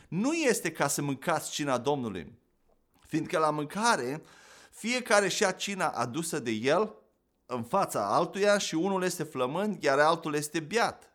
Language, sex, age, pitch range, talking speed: Romanian, male, 30-49, 145-195 Hz, 150 wpm